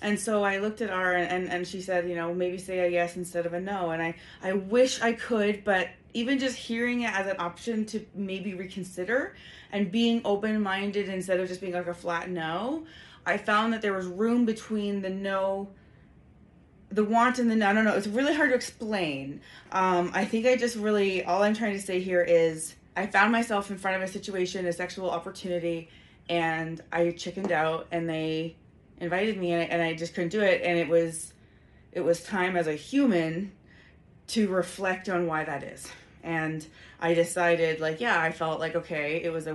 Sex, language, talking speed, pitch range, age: female, English, 205 wpm, 170-220 Hz, 20-39